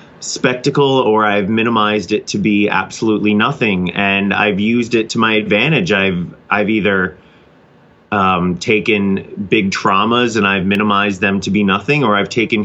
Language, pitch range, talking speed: English, 95-105 Hz, 155 wpm